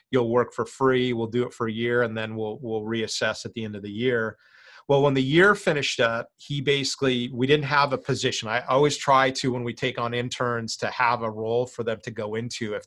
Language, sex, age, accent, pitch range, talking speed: English, male, 30-49, American, 115-130 Hz, 245 wpm